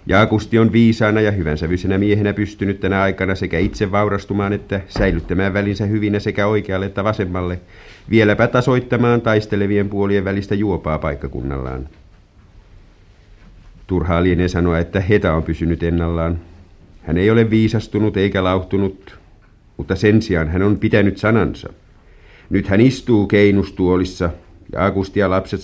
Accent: native